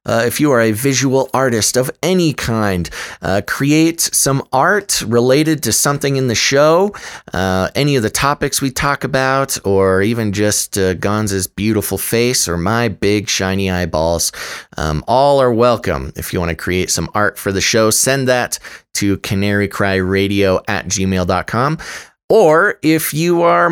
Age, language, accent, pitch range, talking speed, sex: 30-49, English, American, 100-145 Hz, 160 wpm, male